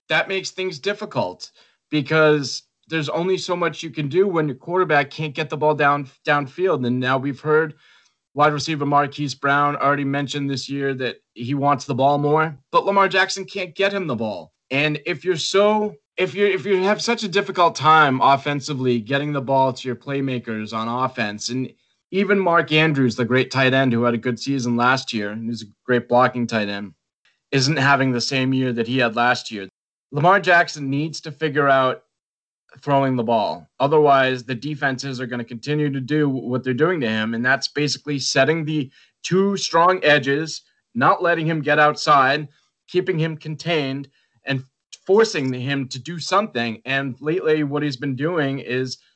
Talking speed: 185 wpm